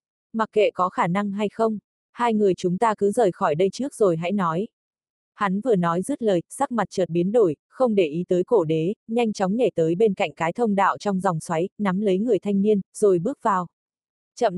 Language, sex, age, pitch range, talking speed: Vietnamese, female, 20-39, 180-220 Hz, 230 wpm